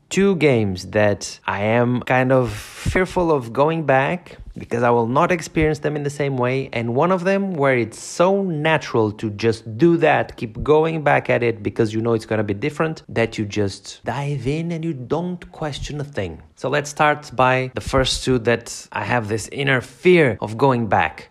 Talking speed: 205 wpm